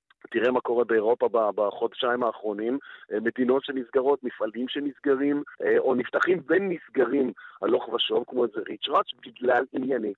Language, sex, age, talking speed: Hebrew, male, 50-69, 125 wpm